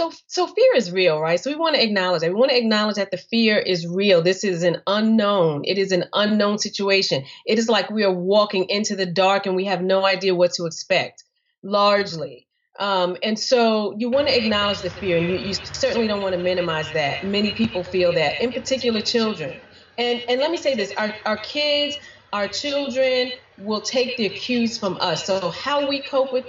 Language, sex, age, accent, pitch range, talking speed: English, female, 30-49, American, 190-250 Hz, 215 wpm